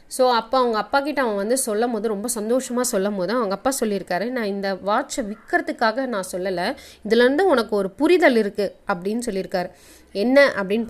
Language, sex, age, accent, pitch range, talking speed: Tamil, female, 20-39, native, 210-280 Hz, 165 wpm